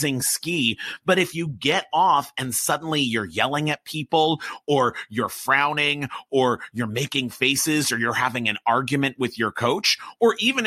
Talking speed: 165 wpm